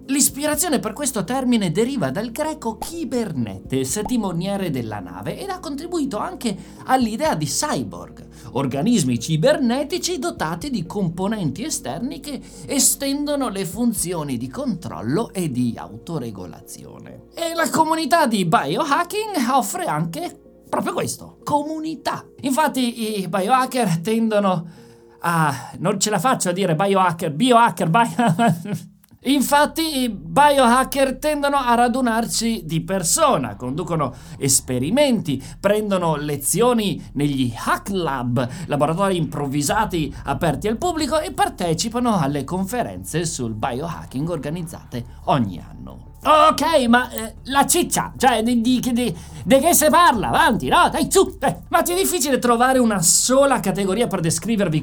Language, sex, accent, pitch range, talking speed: Italian, male, native, 160-270 Hz, 125 wpm